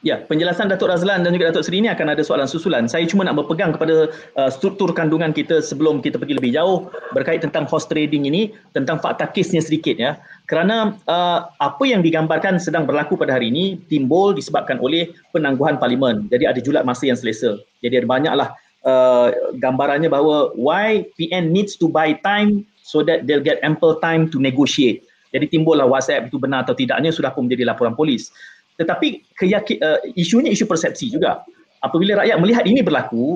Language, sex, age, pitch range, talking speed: Malay, male, 30-49, 155-220 Hz, 185 wpm